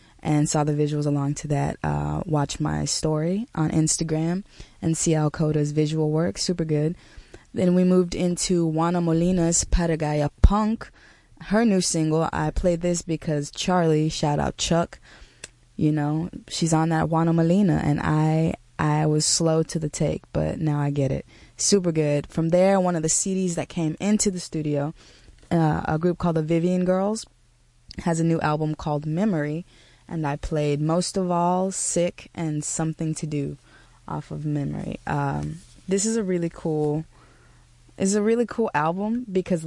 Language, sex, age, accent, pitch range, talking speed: English, female, 20-39, American, 150-175 Hz, 170 wpm